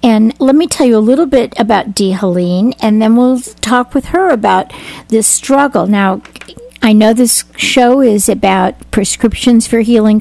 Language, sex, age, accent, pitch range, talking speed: English, female, 50-69, American, 195-245 Hz, 175 wpm